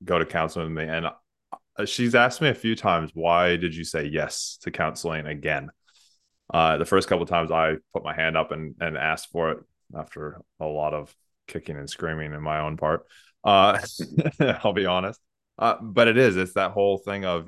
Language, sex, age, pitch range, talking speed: English, male, 20-39, 80-95 Hz, 205 wpm